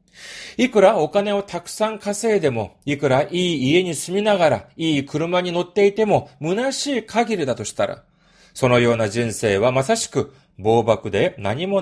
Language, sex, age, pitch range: Japanese, male, 40-59, 135-205 Hz